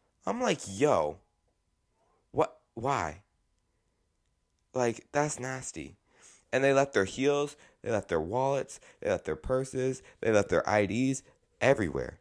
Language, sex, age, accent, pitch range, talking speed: English, male, 20-39, American, 95-135 Hz, 130 wpm